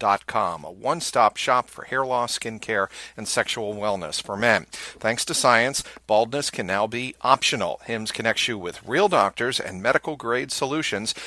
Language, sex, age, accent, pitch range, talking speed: English, male, 50-69, American, 115-135 Hz, 160 wpm